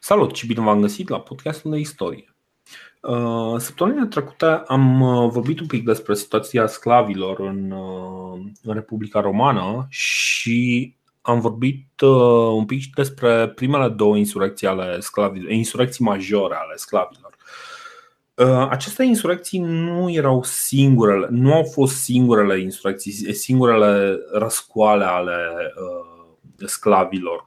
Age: 30-49